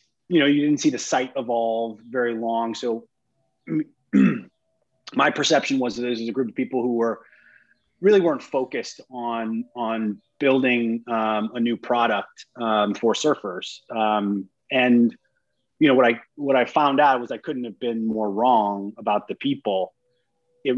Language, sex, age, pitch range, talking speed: English, male, 30-49, 110-130 Hz, 165 wpm